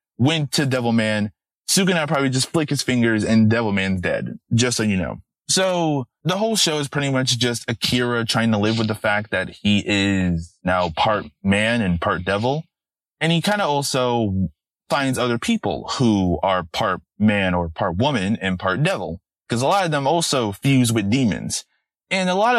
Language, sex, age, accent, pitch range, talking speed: English, male, 20-39, American, 110-150 Hz, 190 wpm